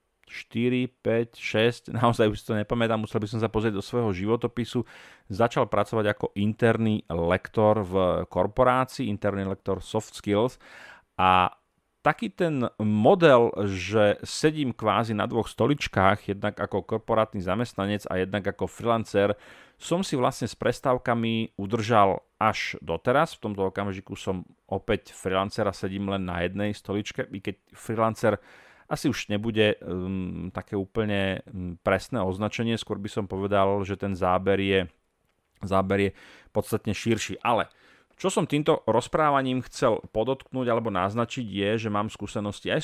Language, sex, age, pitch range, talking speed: Slovak, male, 40-59, 95-115 Hz, 145 wpm